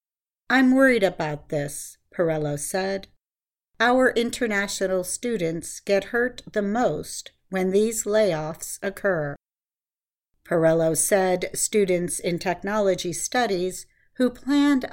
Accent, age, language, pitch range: American, 50-69, English, 160-215 Hz